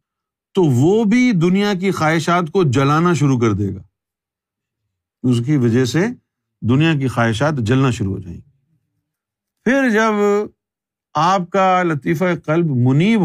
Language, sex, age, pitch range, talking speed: Urdu, male, 50-69, 125-180 Hz, 140 wpm